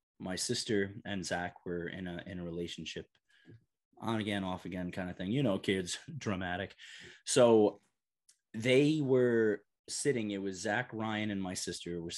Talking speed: 165 wpm